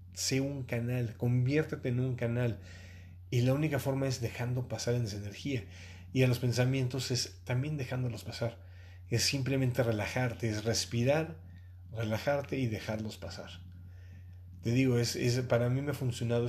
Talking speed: 155 wpm